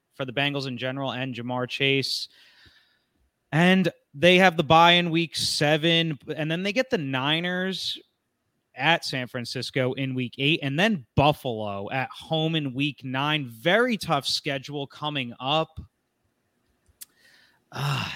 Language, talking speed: English, 140 wpm